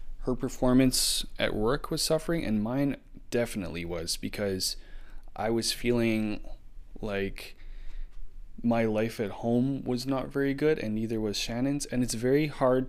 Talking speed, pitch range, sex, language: 145 wpm, 100-125 Hz, male, English